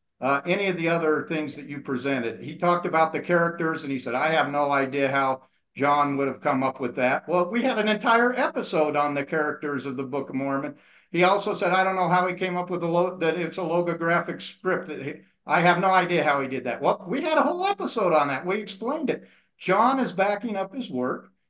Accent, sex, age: American, male, 50-69